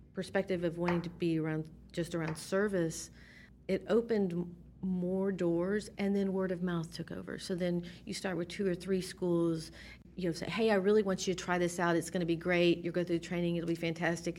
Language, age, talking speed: English, 40-59, 220 wpm